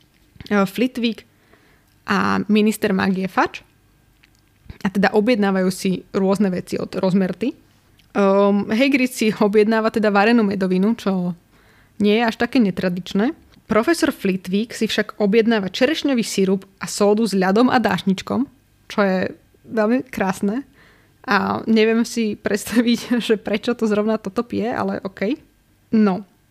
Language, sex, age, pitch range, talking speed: Slovak, female, 20-39, 190-230 Hz, 125 wpm